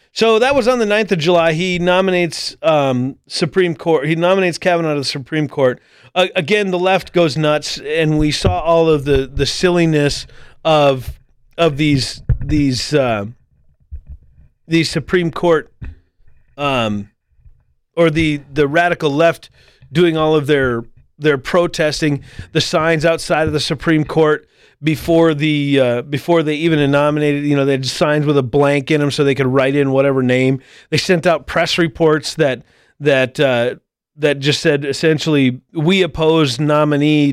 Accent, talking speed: American, 160 wpm